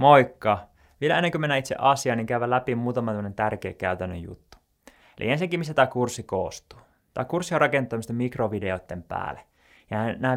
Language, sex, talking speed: Finnish, male, 155 wpm